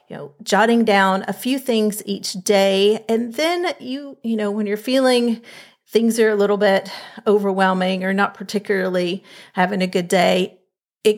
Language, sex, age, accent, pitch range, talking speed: English, female, 40-59, American, 195-225 Hz, 165 wpm